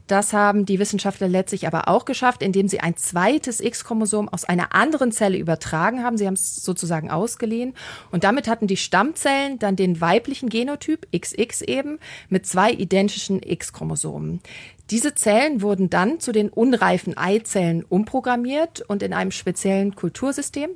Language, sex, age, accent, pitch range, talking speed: German, female, 40-59, German, 185-230 Hz, 155 wpm